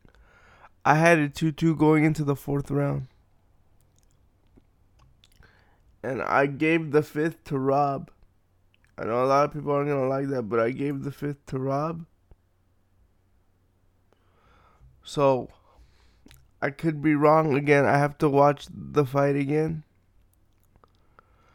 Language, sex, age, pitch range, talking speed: English, male, 20-39, 115-165 Hz, 130 wpm